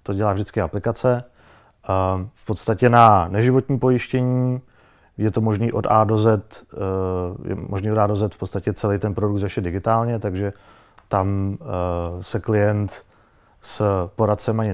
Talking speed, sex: 145 wpm, male